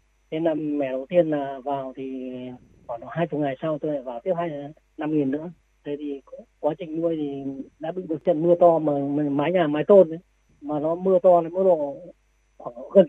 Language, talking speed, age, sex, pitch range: Vietnamese, 215 wpm, 20-39, female, 145-175 Hz